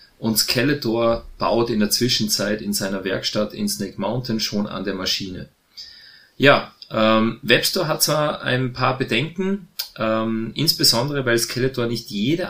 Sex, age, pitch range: male, 30-49, 105-130 Hz